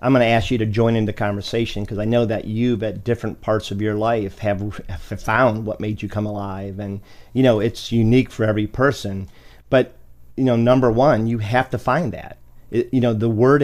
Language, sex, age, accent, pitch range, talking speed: English, male, 50-69, American, 105-120 Hz, 220 wpm